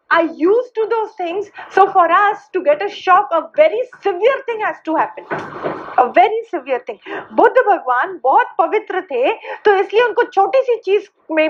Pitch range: 330-435 Hz